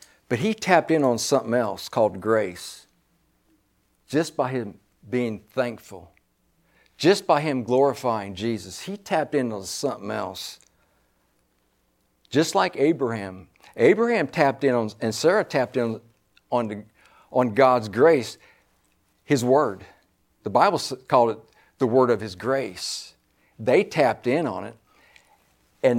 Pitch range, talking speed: 110-165 Hz, 130 wpm